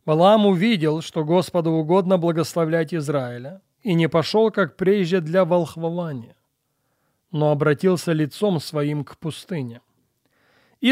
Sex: male